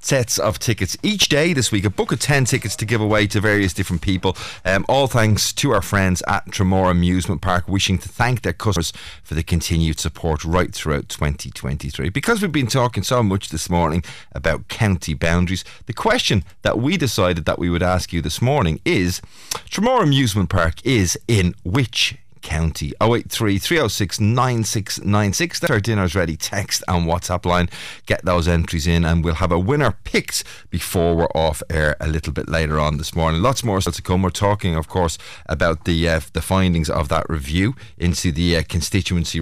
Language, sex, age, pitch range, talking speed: English, male, 30-49, 85-100 Hz, 190 wpm